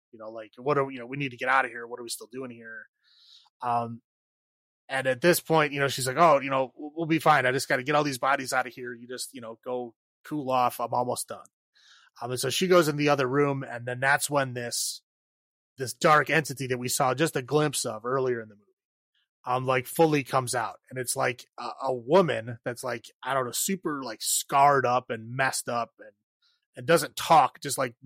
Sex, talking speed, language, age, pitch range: male, 245 wpm, English, 30-49, 125-150 Hz